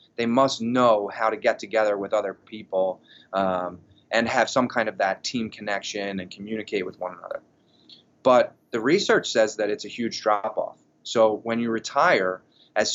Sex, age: male, 30-49